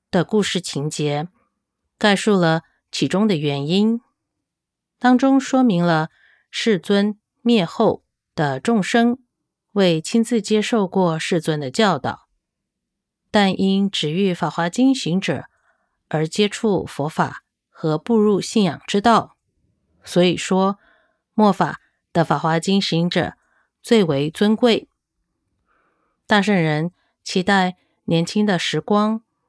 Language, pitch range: English, 165-220 Hz